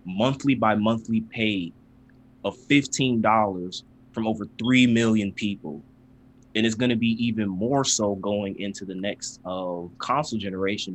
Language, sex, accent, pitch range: English, male, American, 100-125 Hz